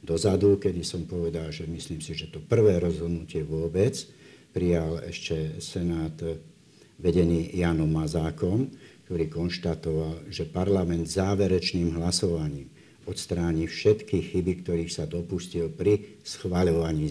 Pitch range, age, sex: 80-95 Hz, 60-79, male